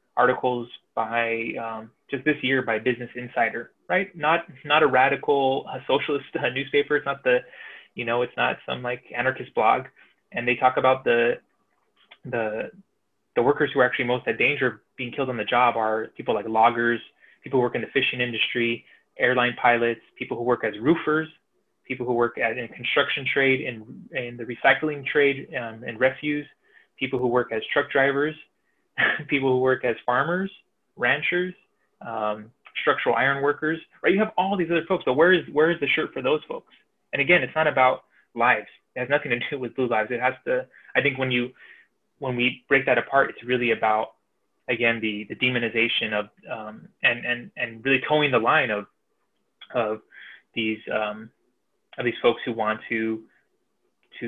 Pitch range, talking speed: 115-145 Hz, 185 wpm